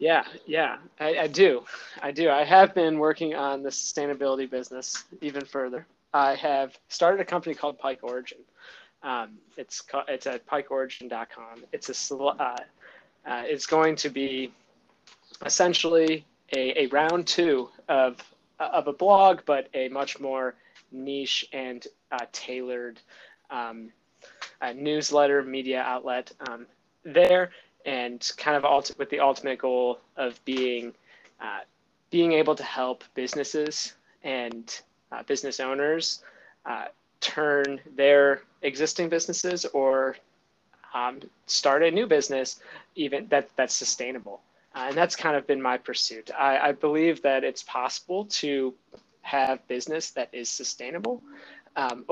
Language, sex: English, male